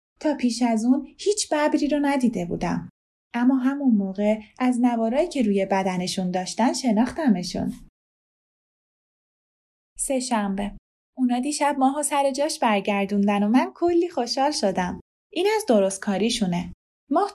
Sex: female